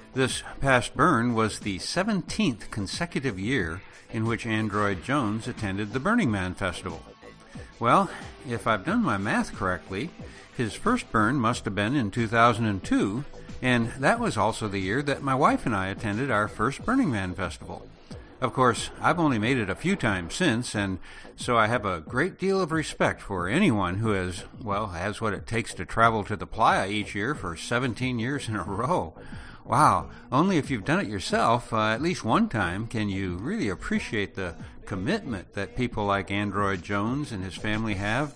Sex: male